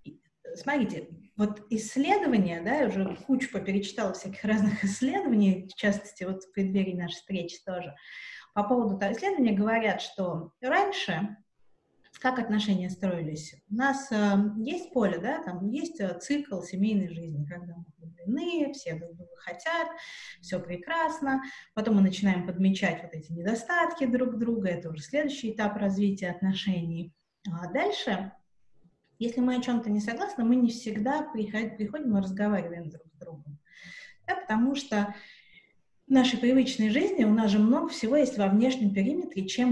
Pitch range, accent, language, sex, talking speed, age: 185-255 Hz, native, Russian, female, 145 wpm, 30-49